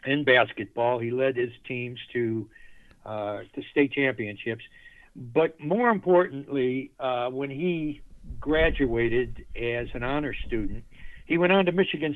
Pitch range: 115-145 Hz